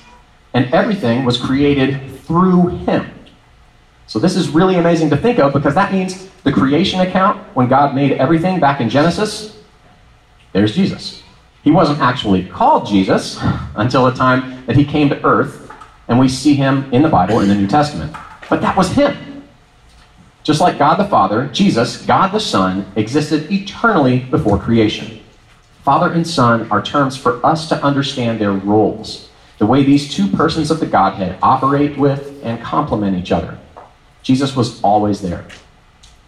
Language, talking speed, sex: English, 165 wpm, male